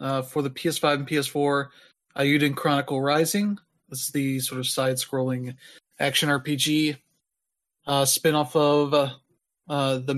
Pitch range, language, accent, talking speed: 130-155 Hz, English, American, 155 wpm